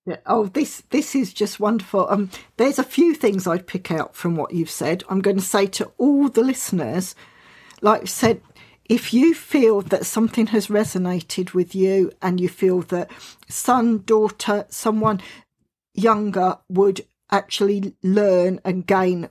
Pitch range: 180-210 Hz